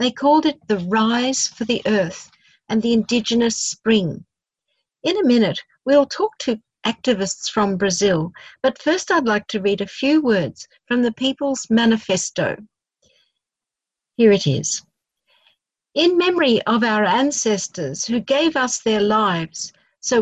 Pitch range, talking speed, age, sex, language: 205-270 Hz, 140 wpm, 50-69, female, English